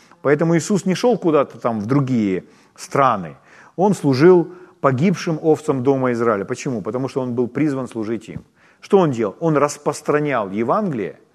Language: Ukrainian